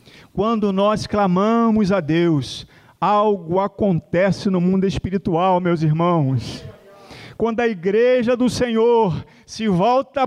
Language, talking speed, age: Portuguese, 110 wpm, 40-59